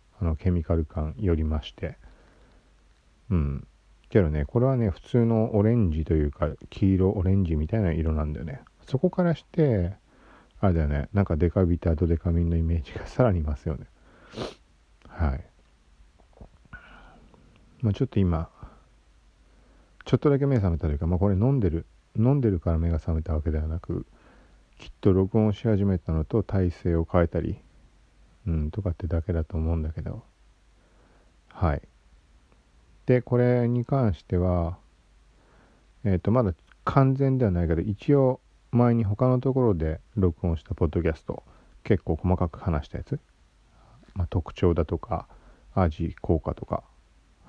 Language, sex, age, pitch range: Japanese, male, 50-69, 80-105 Hz